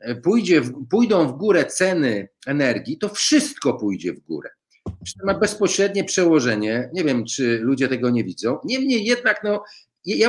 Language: Polish